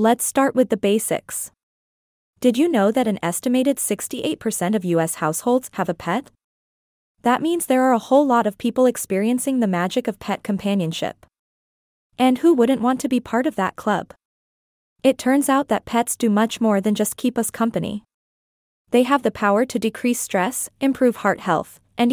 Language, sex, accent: English, female, American